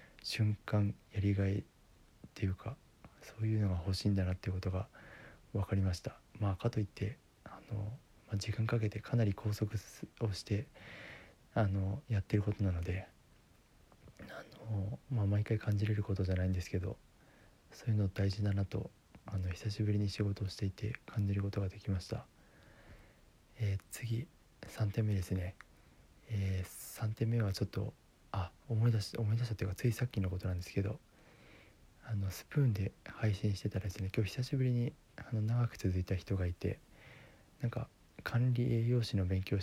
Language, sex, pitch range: Japanese, male, 95-115 Hz